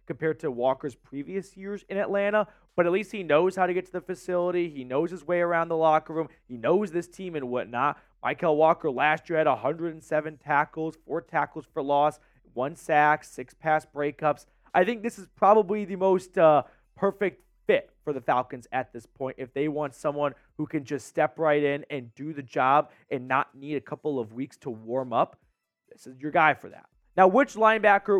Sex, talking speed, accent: male, 205 wpm, American